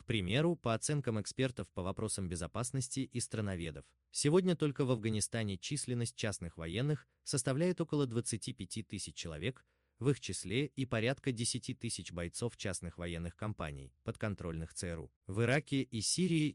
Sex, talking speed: male, 140 wpm